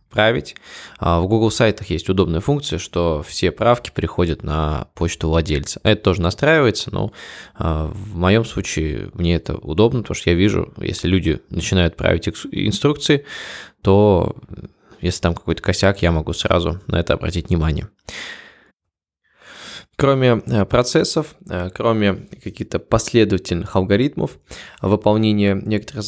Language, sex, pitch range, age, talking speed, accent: Russian, male, 90-115 Hz, 20-39, 120 wpm, native